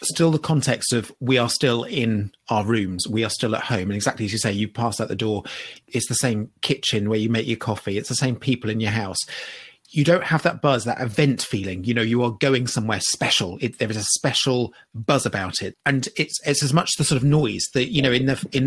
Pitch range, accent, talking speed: 115-140 Hz, British, 255 wpm